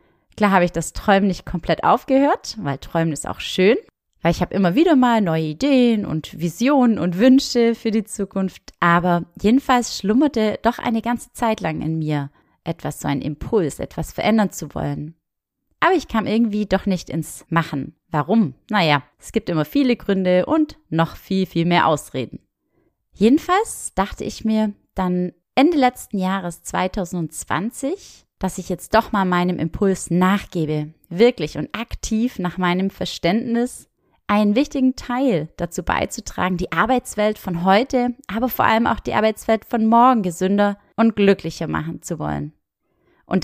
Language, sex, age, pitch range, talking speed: German, female, 30-49, 170-230 Hz, 155 wpm